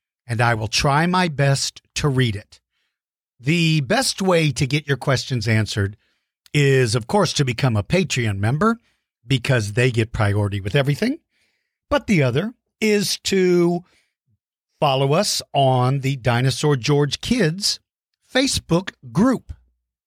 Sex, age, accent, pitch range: male, 50-69, American, 120-180 Hz